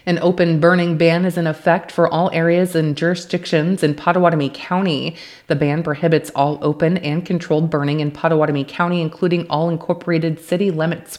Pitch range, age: 150-175 Hz, 30-49